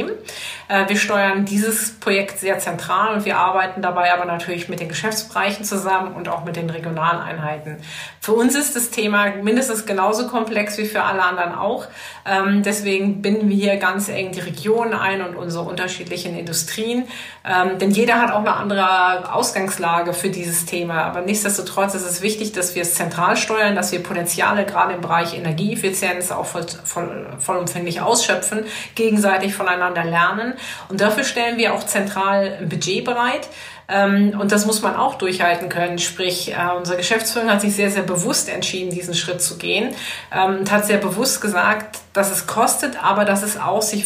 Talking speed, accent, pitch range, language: 170 wpm, German, 180-210 Hz, German